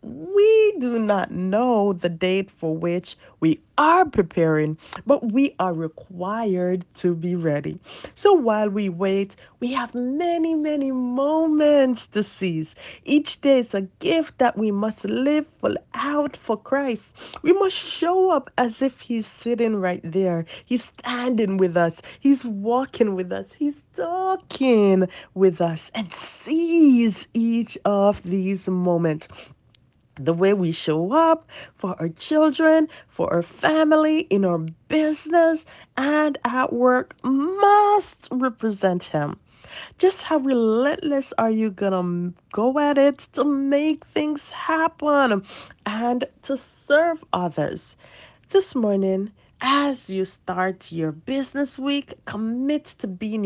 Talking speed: 130 wpm